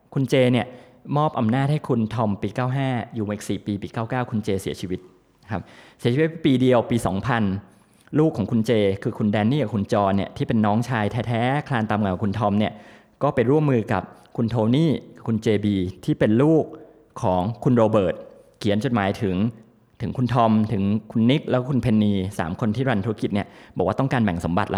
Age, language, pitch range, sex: 20-39, Thai, 100-125 Hz, male